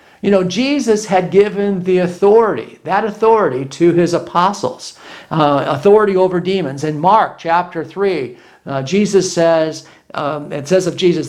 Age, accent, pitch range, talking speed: 50-69, American, 160-200 Hz, 150 wpm